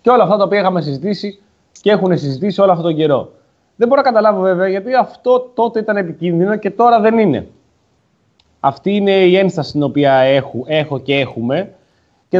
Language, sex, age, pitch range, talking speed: Greek, male, 20-39, 145-200 Hz, 190 wpm